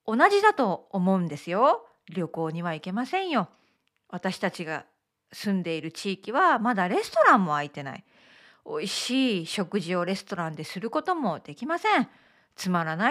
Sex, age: female, 40-59